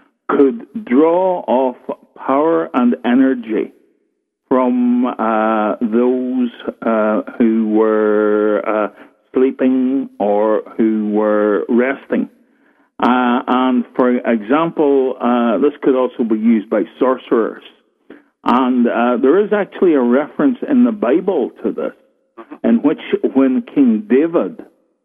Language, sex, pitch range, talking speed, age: English, male, 110-140 Hz, 115 wpm, 50-69